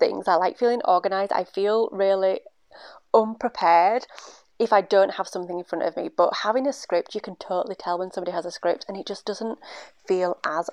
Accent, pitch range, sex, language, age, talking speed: British, 185-230 Hz, female, English, 30-49, 205 wpm